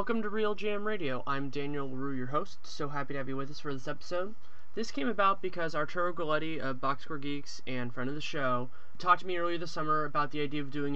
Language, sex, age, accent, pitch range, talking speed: English, male, 20-39, American, 135-160 Hz, 245 wpm